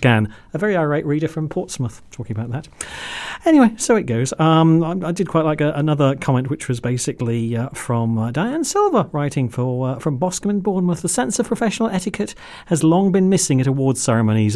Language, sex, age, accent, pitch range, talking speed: English, male, 40-59, British, 135-200 Hz, 200 wpm